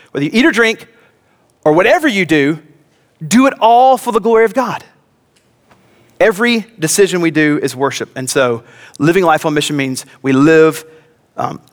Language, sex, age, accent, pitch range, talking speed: English, male, 30-49, American, 145-215 Hz, 170 wpm